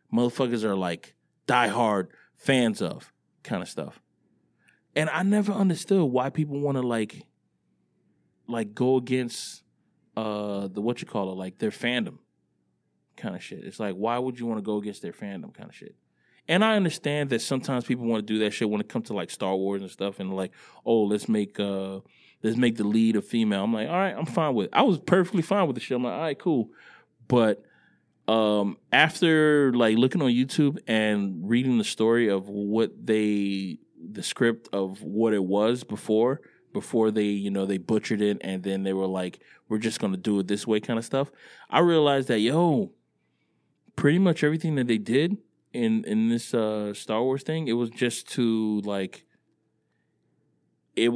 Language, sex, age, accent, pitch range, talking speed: English, male, 20-39, American, 105-130 Hz, 195 wpm